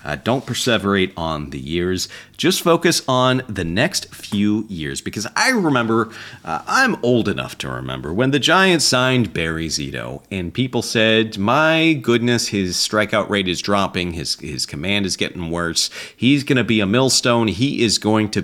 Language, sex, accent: English, male, American